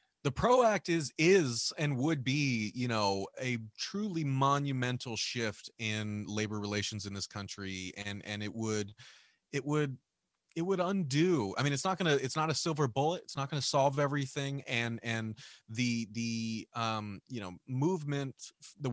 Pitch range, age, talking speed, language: 110-140 Hz, 30-49, 175 wpm, English